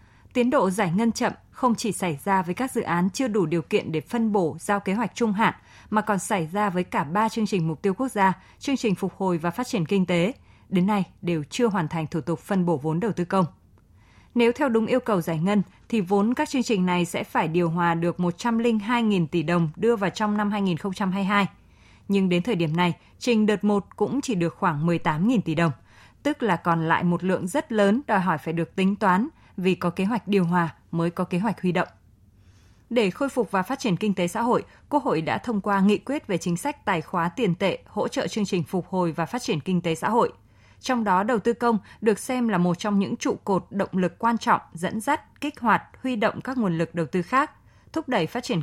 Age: 20-39